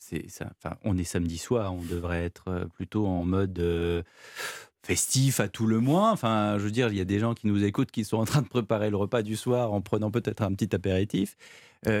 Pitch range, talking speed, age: 100-130 Hz, 240 wpm, 40-59